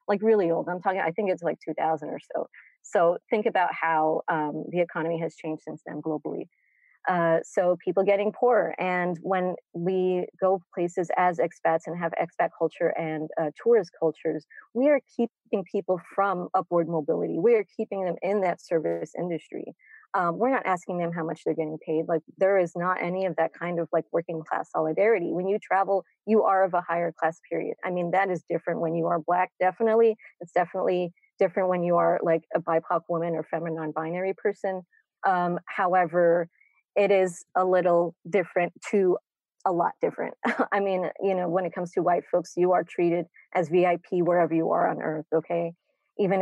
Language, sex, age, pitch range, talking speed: English, female, 30-49, 165-190 Hz, 190 wpm